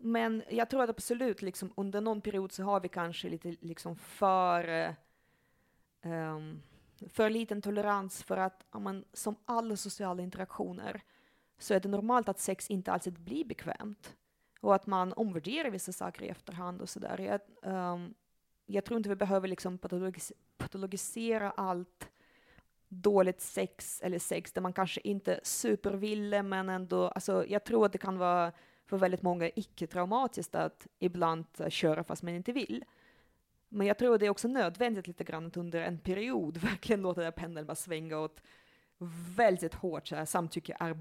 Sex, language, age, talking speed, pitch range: female, Swedish, 30-49, 165 wpm, 170-205 Hz